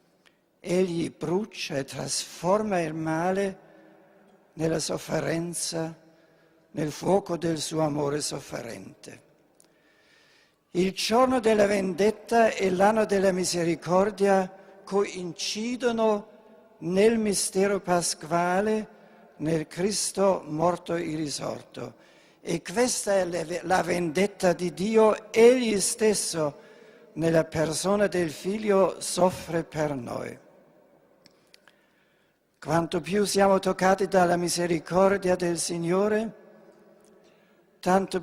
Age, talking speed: 60-79, 90 wpm